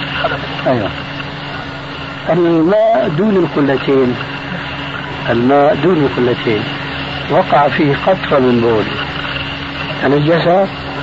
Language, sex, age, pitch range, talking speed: Arabic, male, 60-79, 140-160 Hz, 70 wpm